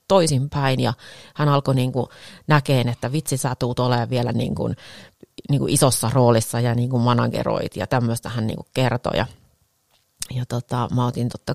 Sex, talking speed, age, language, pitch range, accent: female, 150 wpm, 30-49, Finnish, 115-140 Hz, native